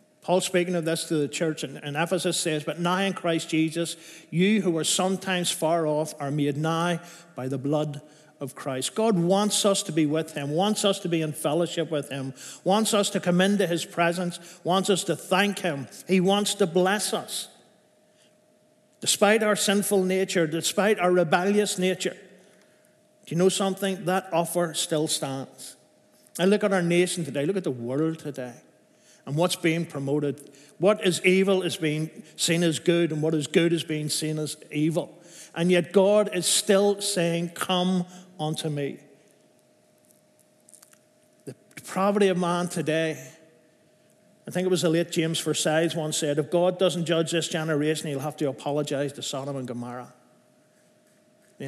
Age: 50-69